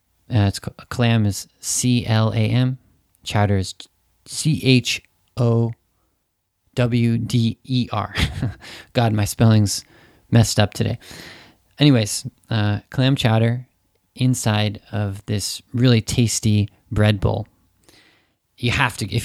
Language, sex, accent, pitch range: Japanese, male, American, 100-120 Hz